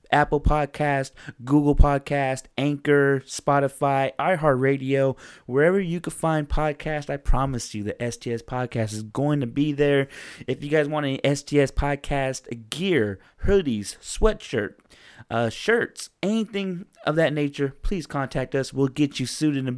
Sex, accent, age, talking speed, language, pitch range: male, American, 20-39, 145 wpm, English, 115-150 Hz